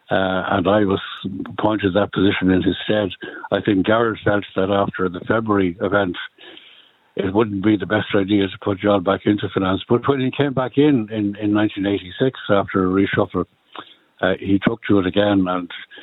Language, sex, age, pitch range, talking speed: English, male, 60-79, 95-110 Hz, 185 wpm